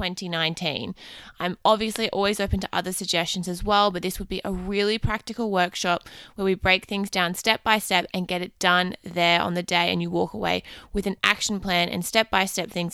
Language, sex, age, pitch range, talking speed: English, female, 20-39, 180-215 Hz, 200 wpm